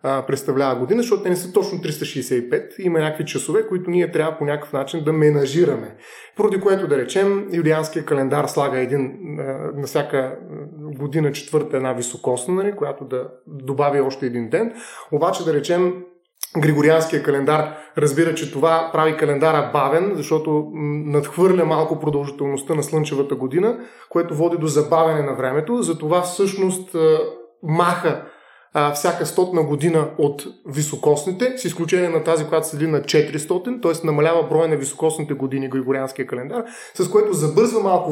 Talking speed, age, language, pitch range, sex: 145 wpm, 30-49, Bulgarian, 150-185 Hz, male